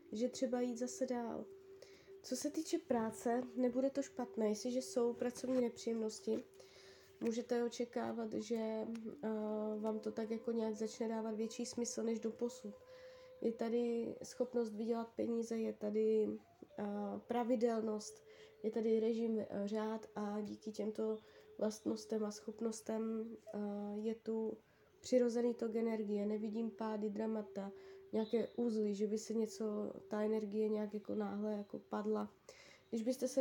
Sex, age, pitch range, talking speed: female, 20-39, 215-250 Hz, 130 wpm